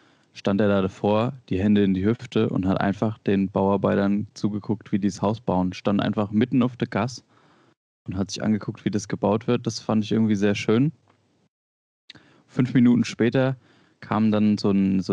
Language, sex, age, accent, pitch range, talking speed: German, male, 20-39, German, 95-115 Hz, 190 wpm